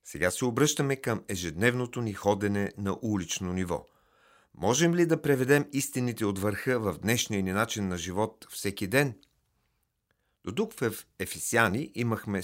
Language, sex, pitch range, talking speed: Bulgarian, male, 95-125 Hz, 140 wpm